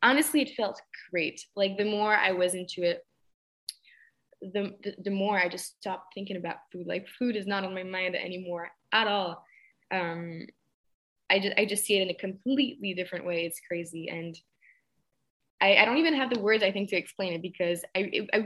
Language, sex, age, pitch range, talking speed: English, female, 10-29, 175-210 Hz, 200 wpm